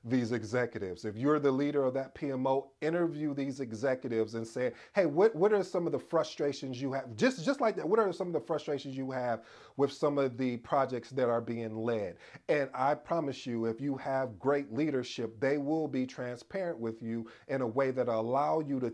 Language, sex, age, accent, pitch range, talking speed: English, male, 40-59, American, 120-155 Hz, 210 wpm